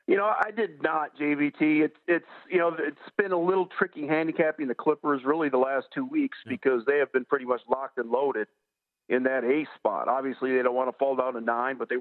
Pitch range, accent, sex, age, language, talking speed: 125-155 Hz, American, male, 50-69, English, 235 wpm